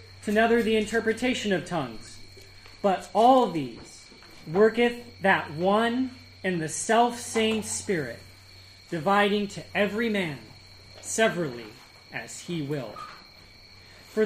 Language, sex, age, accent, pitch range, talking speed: English, male, 30-49, American, 160-225 Hz, 105 wpm